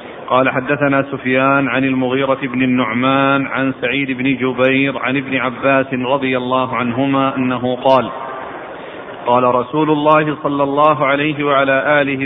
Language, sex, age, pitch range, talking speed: Arabic, male, 40-59, 135-155 Hz, 130 wpm